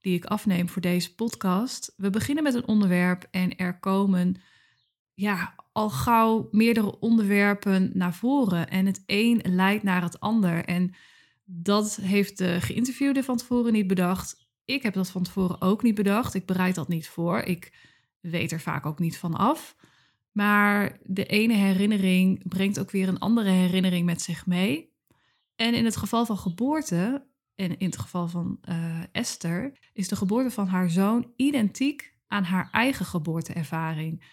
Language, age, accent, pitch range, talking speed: Dutch, 20-39, Dutch, 180-215 Hz, 165 wpm